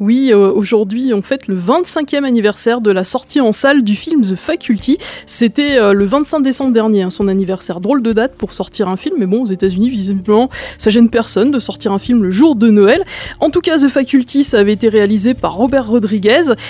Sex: female